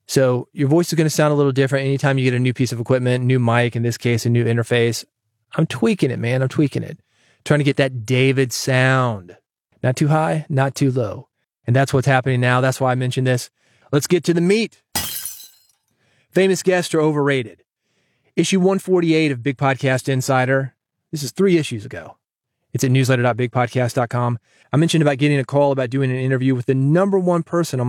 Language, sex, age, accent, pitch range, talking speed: English, male, 30-49, American, 125-150 Hz, 200 wpm